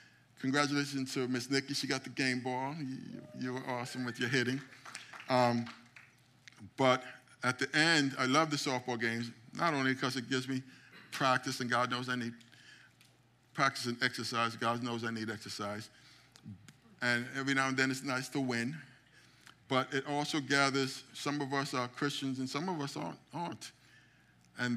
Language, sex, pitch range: English, male, 120-135 Hz